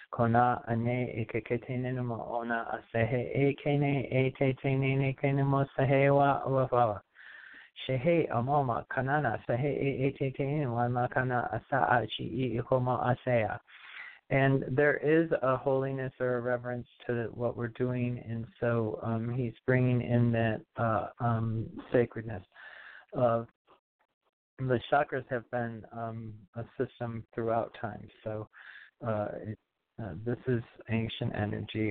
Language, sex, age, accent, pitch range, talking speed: English, male, 40-59, American, 115-130 Hz, 75 wpm